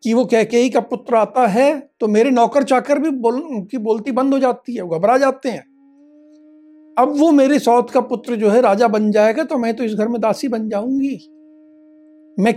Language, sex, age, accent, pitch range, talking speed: Hindi, male, 60-79, native, 195-290 Hz, 210 wpm